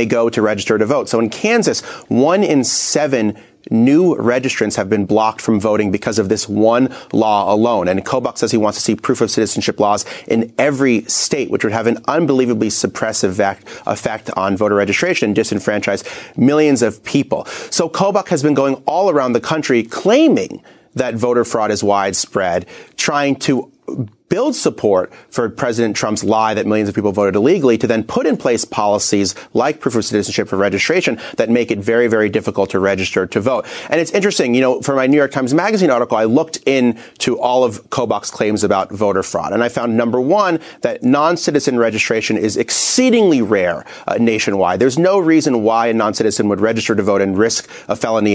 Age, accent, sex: 30-49, American, male